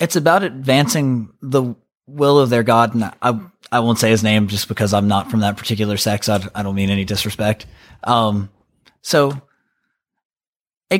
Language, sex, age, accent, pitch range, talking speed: English, male, 30-49, American, 110-150 Hz, 175 wpm